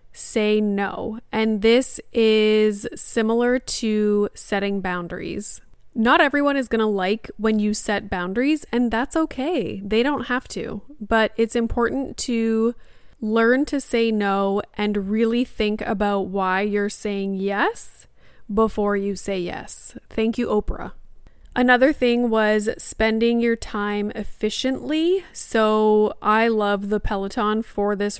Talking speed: 135 wpm